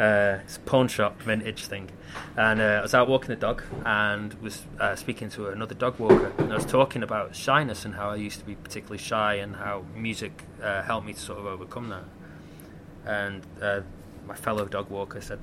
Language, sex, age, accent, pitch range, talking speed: English, male, 20-39, British, 100-115 Hz, 215 wpm